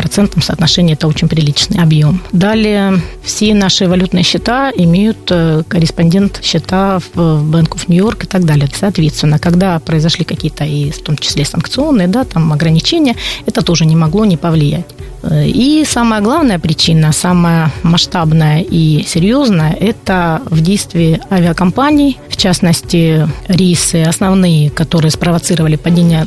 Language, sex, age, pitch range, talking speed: Russian, female, 20-39, 160-190 Hz, 130 wpm